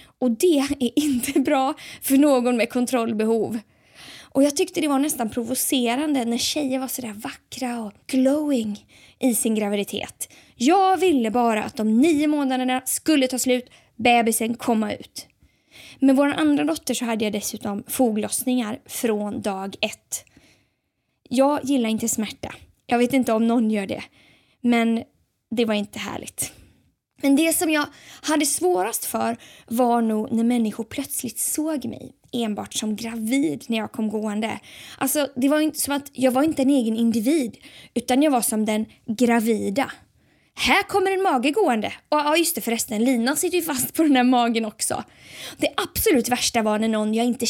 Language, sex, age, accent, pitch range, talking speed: Swedish, female, 20-39, native, 225-285 Hz, 170 wpm